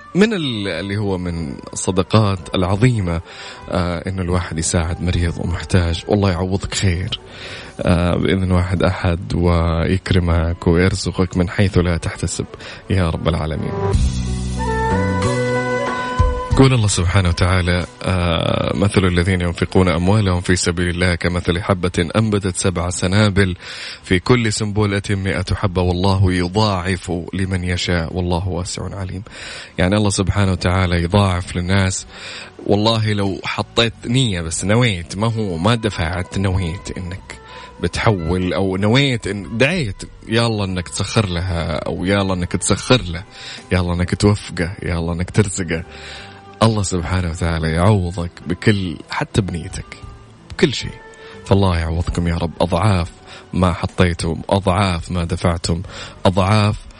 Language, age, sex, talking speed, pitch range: Arabic, 20-39, male, 120 wpm, 85-100 Hz